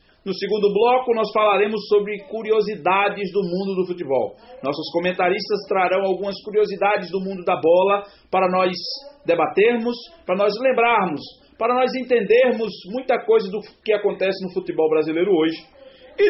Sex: male